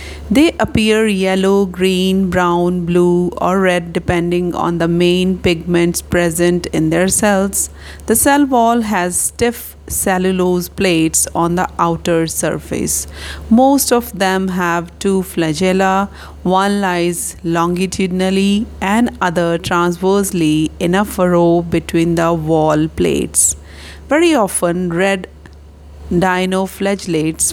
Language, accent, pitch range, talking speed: English, Indian, 165-195 Hz, 110 wpm